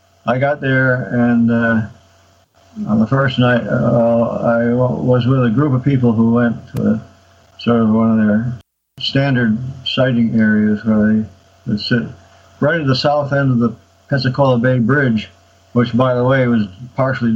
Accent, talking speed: American, 165 wpm